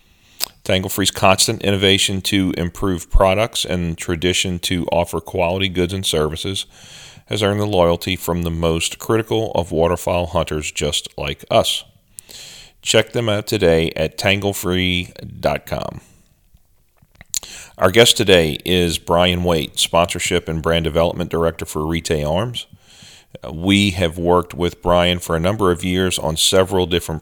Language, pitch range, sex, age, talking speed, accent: English, 80-95 Hz, male, 40-59, 135 wpm, American